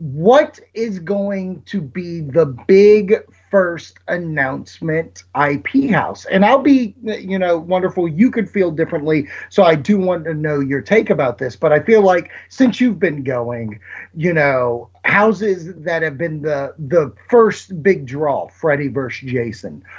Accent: American